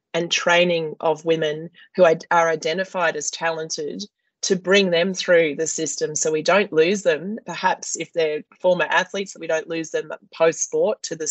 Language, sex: English, female